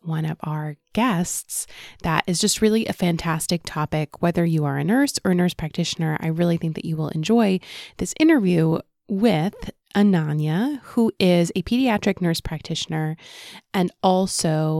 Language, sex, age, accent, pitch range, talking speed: English, female, 20-39, American, 160-200 Hz, 160 wpm